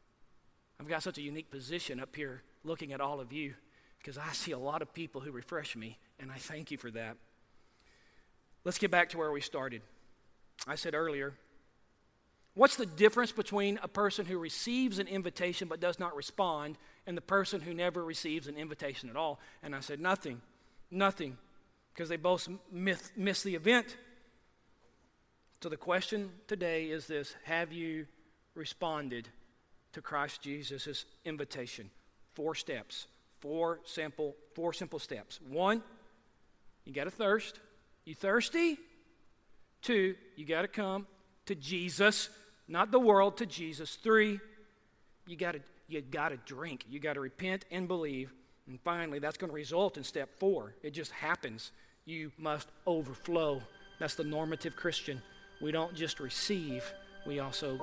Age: 40-59